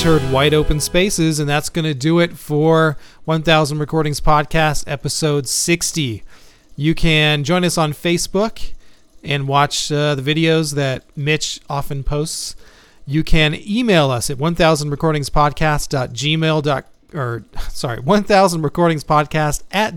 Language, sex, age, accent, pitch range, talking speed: English, male, 40-59, American, 140-165 Hz, 130 wpm